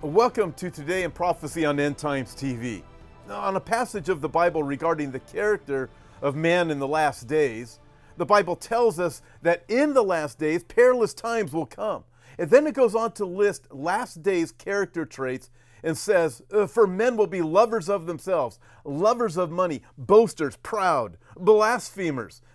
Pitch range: 150-220 Hz